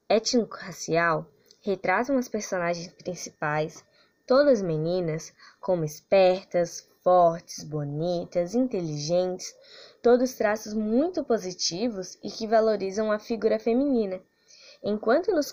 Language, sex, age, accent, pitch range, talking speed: Portuguese, female, 10-29, Brazilian, 175-250 Hz, 95 wpm